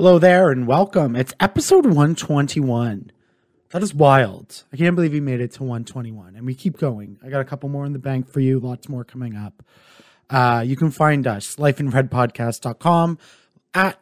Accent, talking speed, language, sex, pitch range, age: American, 185 wpm, English, male, 125-155 Hz, 30-49